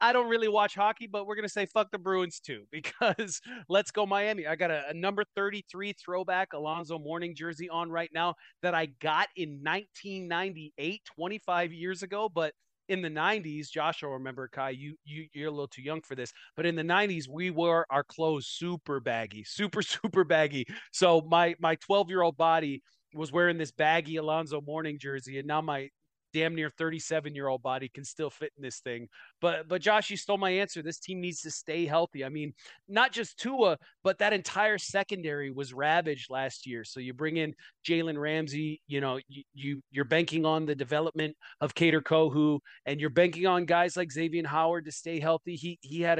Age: 30-49